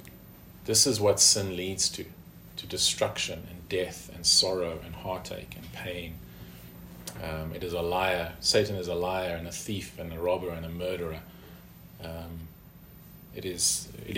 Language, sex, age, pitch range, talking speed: English, male, 40-59, 90-110 Hz, 150 wpm